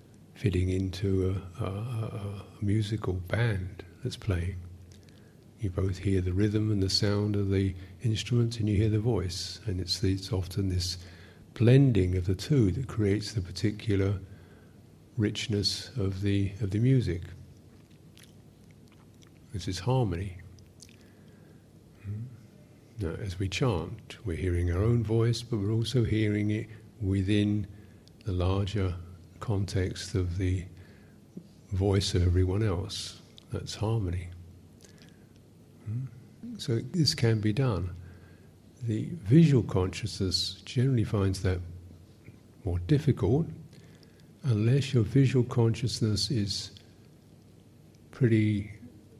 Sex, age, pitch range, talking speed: male, 50-69, 95-115 Hz, 115 wpm